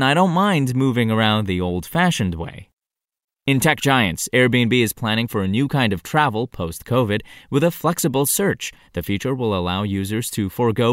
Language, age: English, 20-39